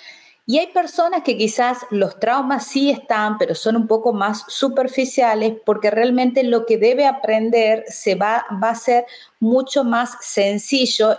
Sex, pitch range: female, 195-245 Hz